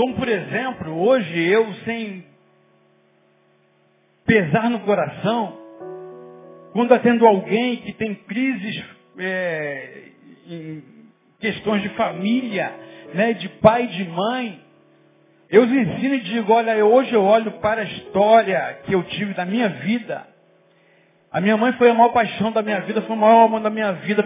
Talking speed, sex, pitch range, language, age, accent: 150 wpm, male, 190-240 Hz, Portuguese, 50-69, Brazilian